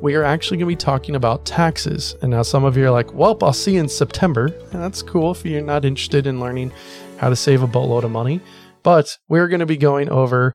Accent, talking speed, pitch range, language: American, 245 wpm, 135-165 Hz, English